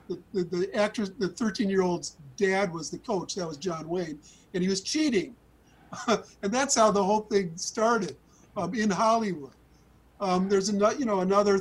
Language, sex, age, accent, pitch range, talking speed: English, male, 50-69, American, 170-200 Hz, 185 wpm